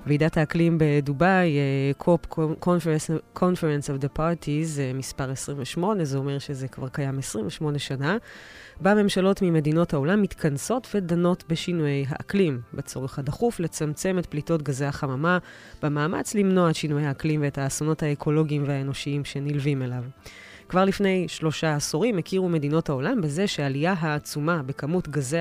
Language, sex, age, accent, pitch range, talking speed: Hebrew, female, 20-39, native, 140-175 Hz, 135 wpm